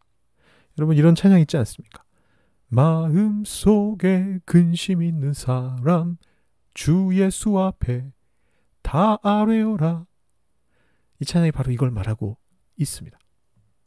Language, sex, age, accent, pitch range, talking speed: English, male, 40-59, Korean, 120-195 Hz, 90 wpm